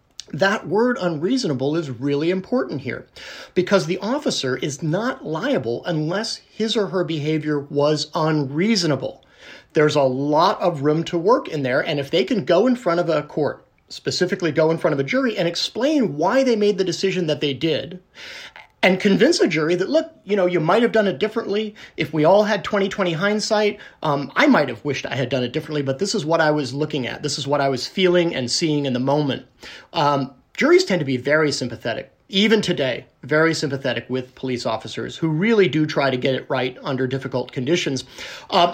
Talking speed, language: 205 wpm, English